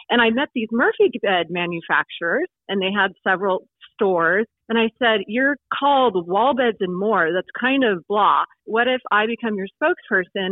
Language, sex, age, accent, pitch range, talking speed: English, female, 30-49, American, 185-225 Hz, 175 wpm